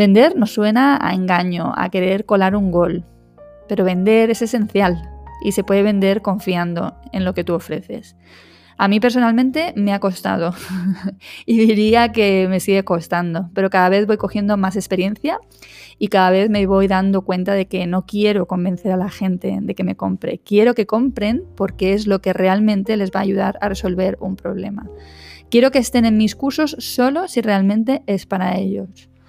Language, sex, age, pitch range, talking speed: Spanish, female, 20-39, 185-220 Hz, 185 wpm